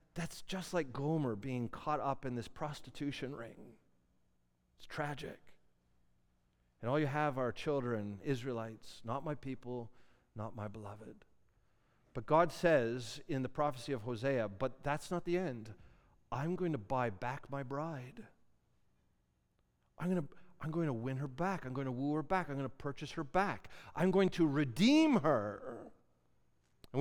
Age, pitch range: 40-59, 115-180 Hz